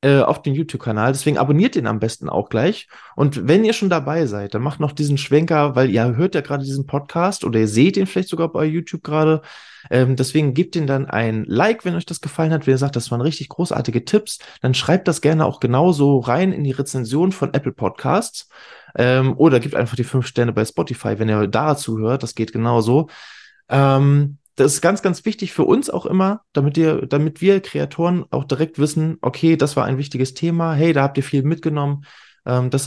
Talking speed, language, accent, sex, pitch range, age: 210 wpm, German, German, male, 125-160 Hz, 20-39